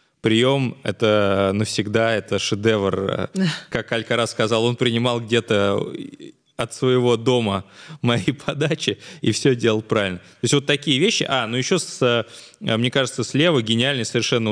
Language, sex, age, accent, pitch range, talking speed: Russian, male, 20-39, native, 105-135 Hz, 145 wpm